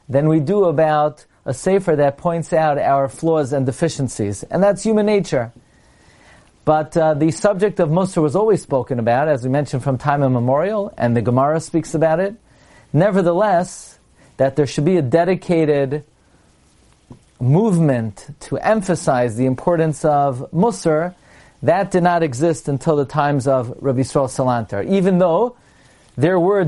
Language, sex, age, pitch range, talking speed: English, male, 40-59, 125-175 Hz, 155 wpm